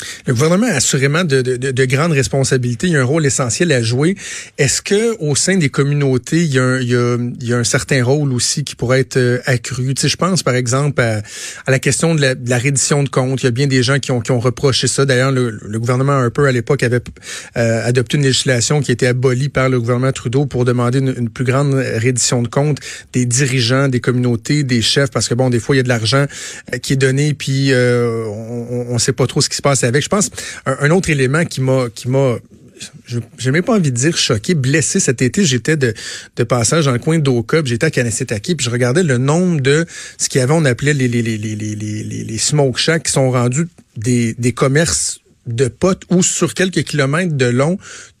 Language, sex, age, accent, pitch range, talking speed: French, male, 30-49, Canadian, 125-145 Hz, 245 wpm